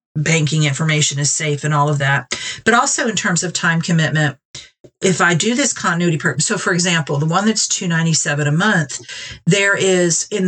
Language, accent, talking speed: English, American, 190 wpm